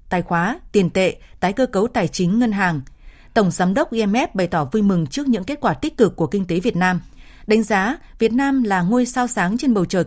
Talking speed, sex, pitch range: 245 wpm, female, 185-230 Hz